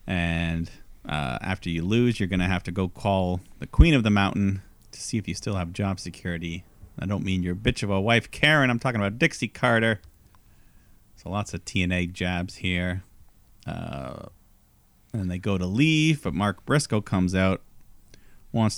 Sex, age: male, 40-59